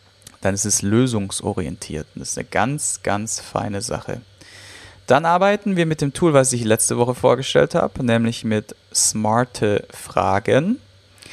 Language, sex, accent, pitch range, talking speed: German, male, German, 100-125 Hz, 145 wpm